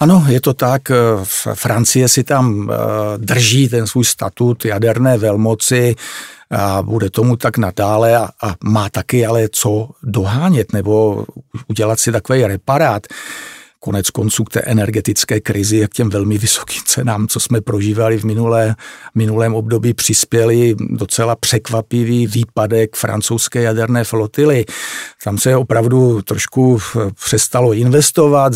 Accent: native